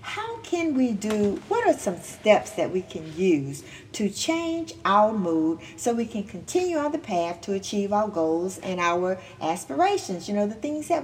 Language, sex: English, female